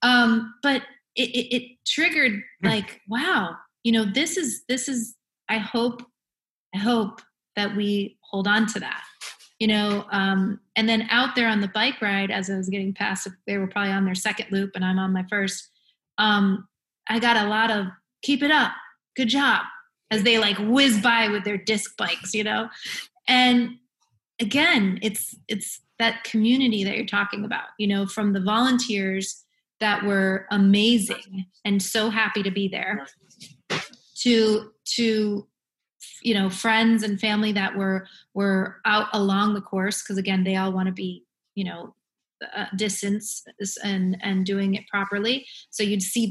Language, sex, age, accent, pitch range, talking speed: English, female, 30-49, American, 195-230 Hz, 170 wpm